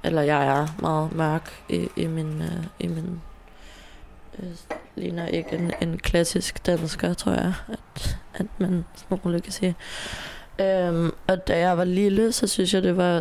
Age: 20-39